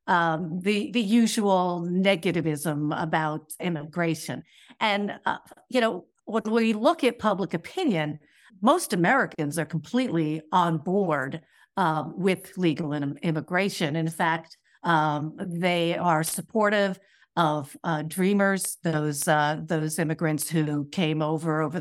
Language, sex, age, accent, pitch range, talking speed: English, female, 50-69, American, 160-195 Hz, 120 wpm